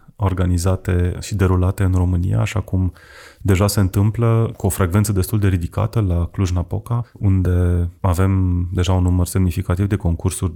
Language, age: Romanian, 30-49